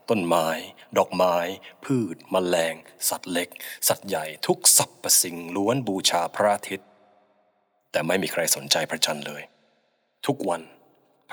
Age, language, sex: 20-39, Thai, male